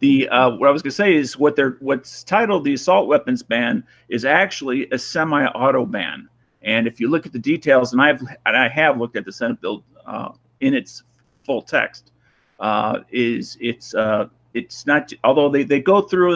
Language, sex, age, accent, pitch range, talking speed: English, male, 50-69, American, 125-175 Hz, 200 wpm